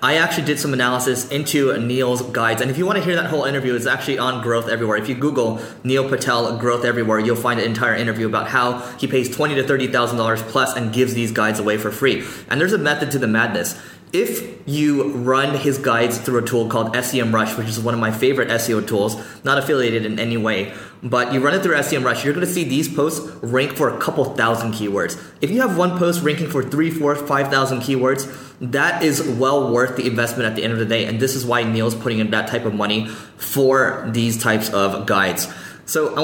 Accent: American